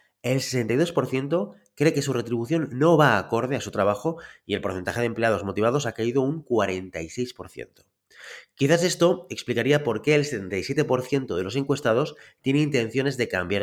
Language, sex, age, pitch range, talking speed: Spanish, male, 30-49, 115-150 Hz, 160 wpm